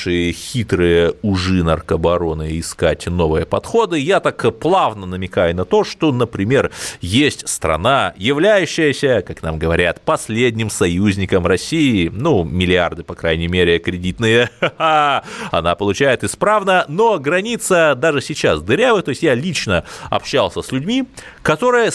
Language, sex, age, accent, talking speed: Russian, male, 30-49, native, 125 wpm